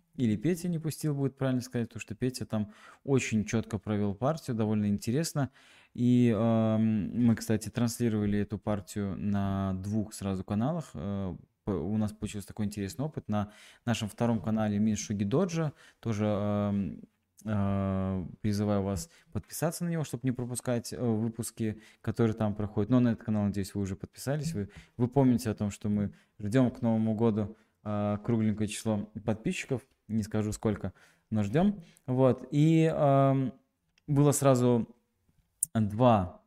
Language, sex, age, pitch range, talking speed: Russian, male, 20-39, 105-130 Hz, 150 wpm